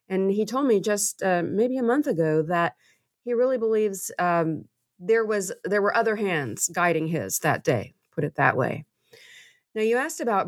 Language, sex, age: English, female, 30-49